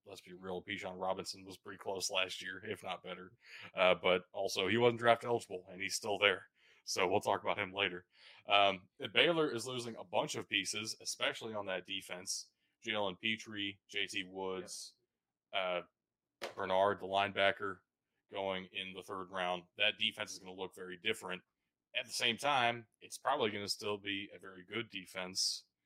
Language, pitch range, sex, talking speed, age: English, 90-110 Hz, male, 180 wpm, 20-39